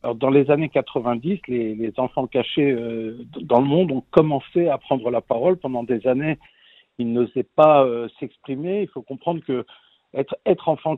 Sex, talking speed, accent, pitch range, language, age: male, 180 wpm, French, 125-165 Hz, French, 50-69